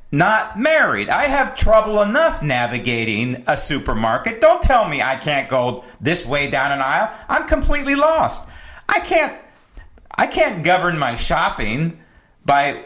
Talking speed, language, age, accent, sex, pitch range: 145 wpm, English, 40-59, American, male, 130-220 Hz